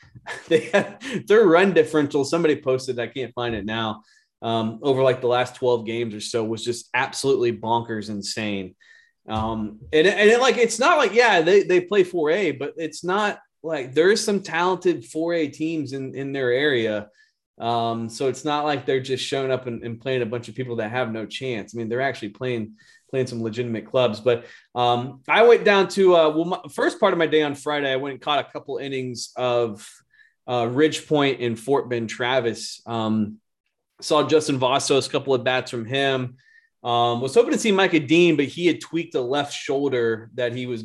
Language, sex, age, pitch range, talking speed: English, male, 20-39, 115-155 Hz, 205 wpm